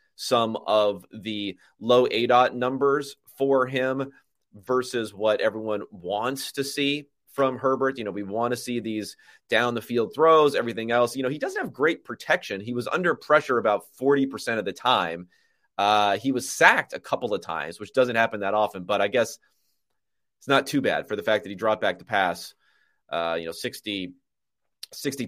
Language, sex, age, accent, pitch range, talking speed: English, male, 30-49, American, 105-140 Hz, 190 wpm